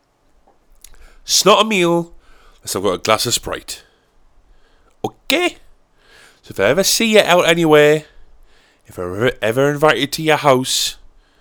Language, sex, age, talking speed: English, male, 30-49, 155 wpm